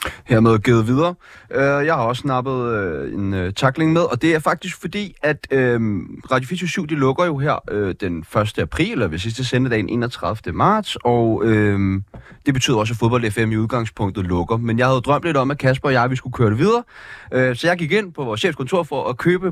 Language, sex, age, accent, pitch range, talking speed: Danish, male, 30-49, native, 110-170 Hz, 230 wpm